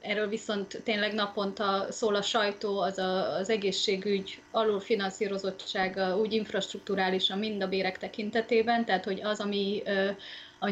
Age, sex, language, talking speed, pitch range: 30-49, female, Hungarian, 125 wpm, 195-230 Hz